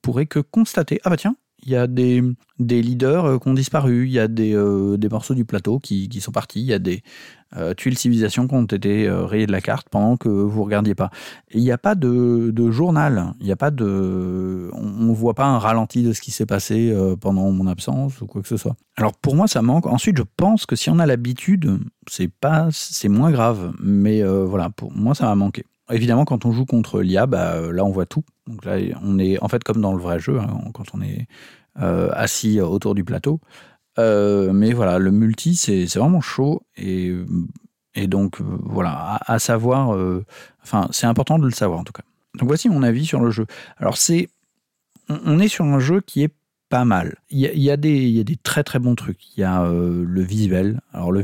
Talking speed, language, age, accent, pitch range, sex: 240 wpm, French, 40-59, French, 100-135 Hz, male